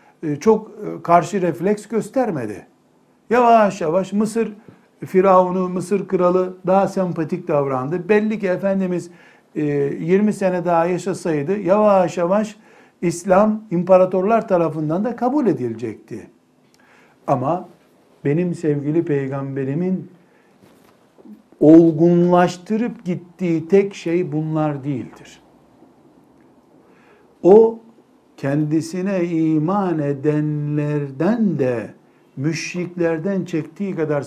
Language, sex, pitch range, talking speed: Turkish, male, 160-200 Hz, 80 wpm